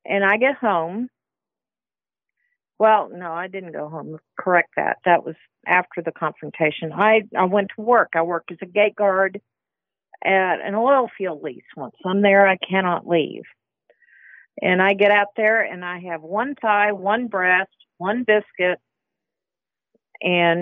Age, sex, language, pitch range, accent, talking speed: 50-69, female, English, 165-205 Hz, American, 155 wpm